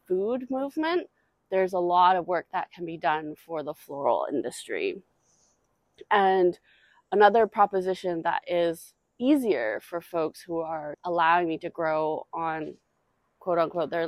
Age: 20-39